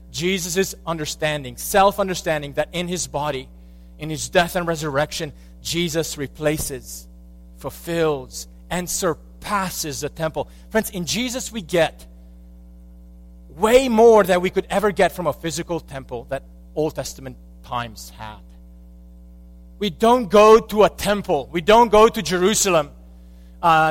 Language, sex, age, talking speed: English, male, 30-49, 135 wpm